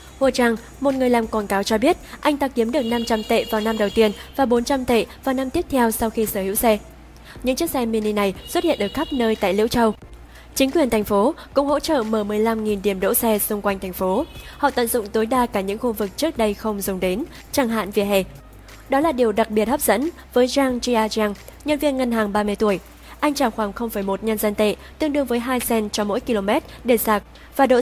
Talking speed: 245 wpm